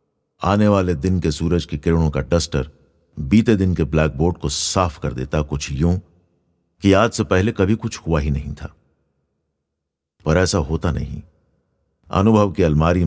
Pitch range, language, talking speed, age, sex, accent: 75-105 Hz, Hindi, 170 wpm, 50-69, male, native